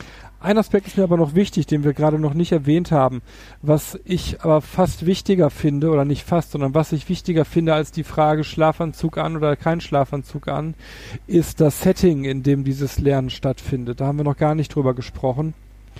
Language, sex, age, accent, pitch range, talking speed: German, male, 40-59, German, 140-165 Hz, 200 wpm